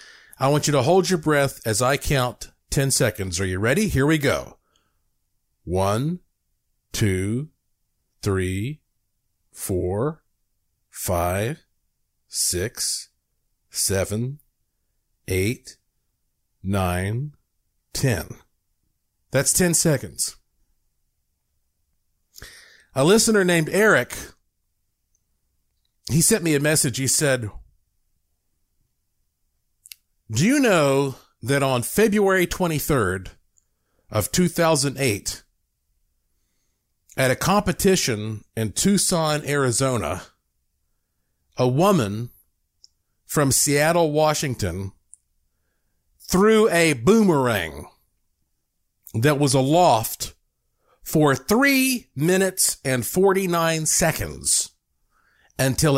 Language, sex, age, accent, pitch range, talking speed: English, male, 50-69, American, 95-155 Hz, 80 wpm